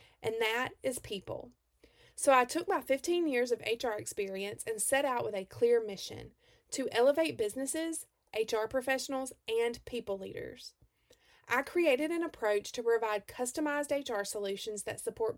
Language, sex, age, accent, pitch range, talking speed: English, female, 30-49, American, 220-315 Hz, 150 wpm